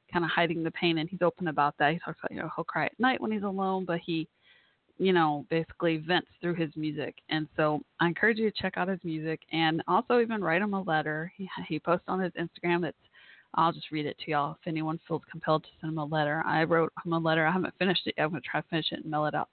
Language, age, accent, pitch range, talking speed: English, 30-49, American, 160-190 Hz, 275 wpm